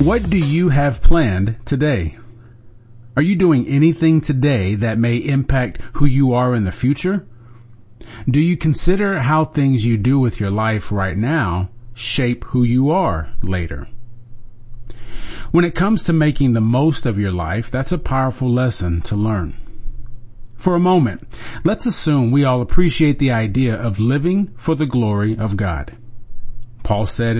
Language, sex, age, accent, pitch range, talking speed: English, male, 40-59, American, 110-145 Hz, 160 wpm